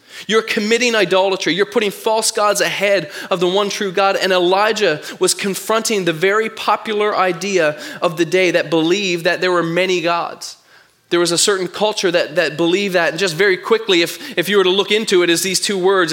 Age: 20-39